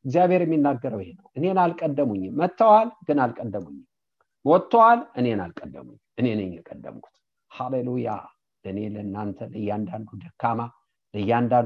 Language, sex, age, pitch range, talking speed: English, male, 50-69, 110-155 Hz, 100 wpm